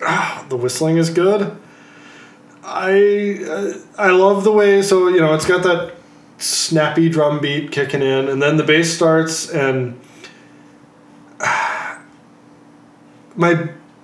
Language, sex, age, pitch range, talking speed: English, male, 20-39, 130-175 Hz, 130 wpm